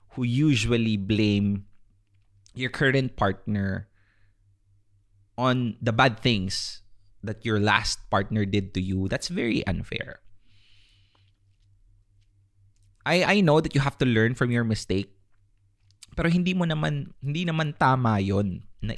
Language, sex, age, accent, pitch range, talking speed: English, male, 20-39, Filipino, 100-125 Hz, 125 wpm